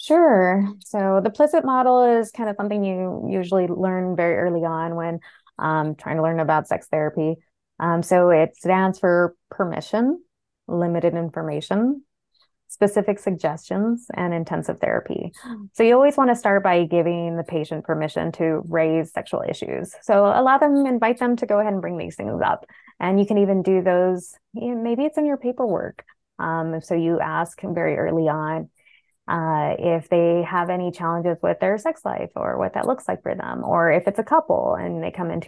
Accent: American